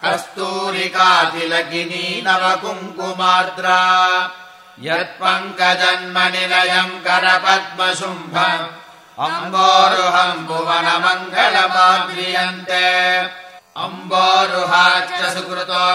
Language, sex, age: English, male, 60-79